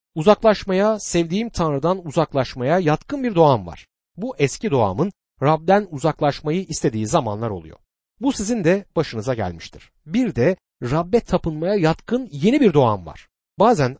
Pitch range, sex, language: 120-185 Hz, male, Turkish